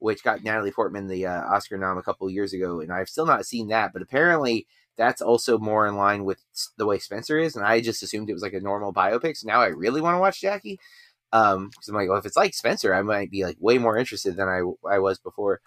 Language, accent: English, American